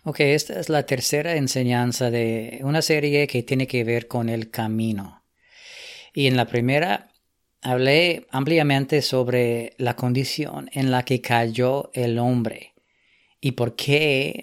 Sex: female